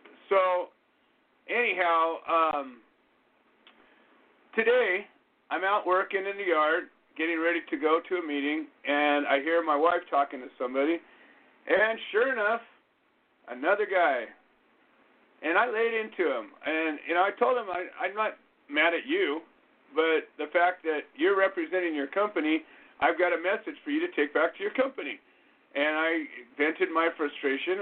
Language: English